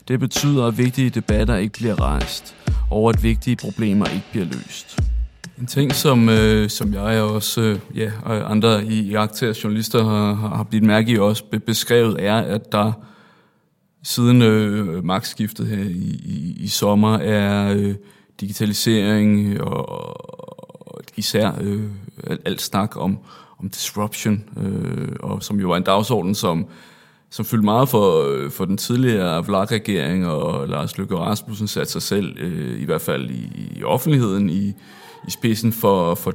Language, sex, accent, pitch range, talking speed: Danish, male, native, 100-115 Hz, 155 wpm